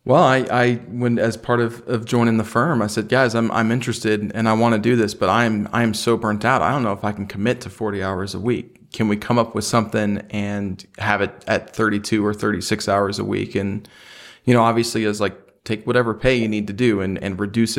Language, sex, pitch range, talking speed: English, male, 105-120 Hz, 255 wpm